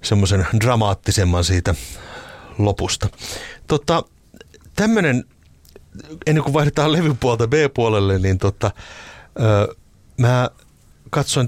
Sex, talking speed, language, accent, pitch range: male, 85 wpm, Finnish, native, 95-125 Hz